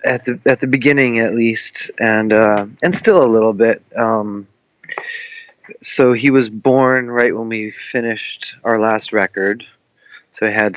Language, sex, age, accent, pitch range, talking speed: English, male, 30-49, American, 110-130 Hz, 160 wpm